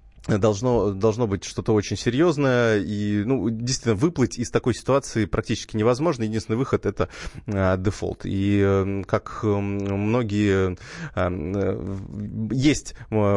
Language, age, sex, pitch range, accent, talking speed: Russian, 20-39, male, 100-125 Hz, native, 105 wpm